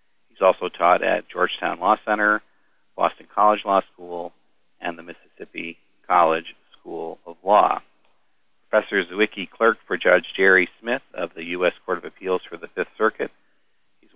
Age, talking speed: 40-59, 155 wpm